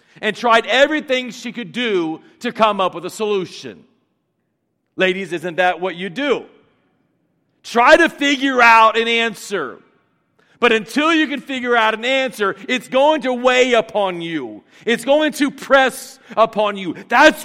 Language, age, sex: English, 40-59, male